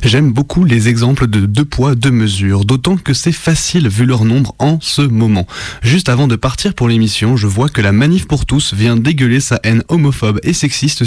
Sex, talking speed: male, 210 wpm